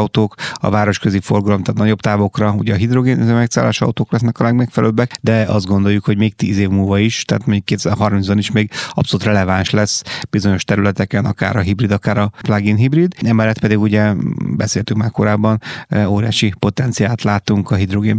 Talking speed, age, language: 170 wpm, 30-49, Hungarian